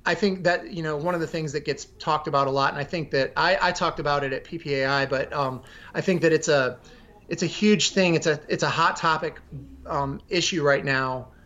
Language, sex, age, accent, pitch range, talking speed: English, male, 30-49, American, 140-165 Hz, 245 wpm